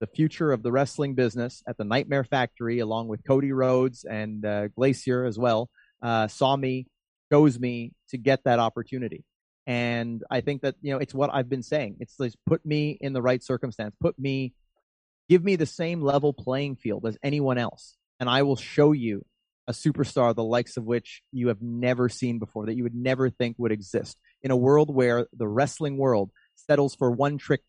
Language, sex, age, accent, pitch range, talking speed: English, male, 30-49, American, 120-145 Hz, 200 wpm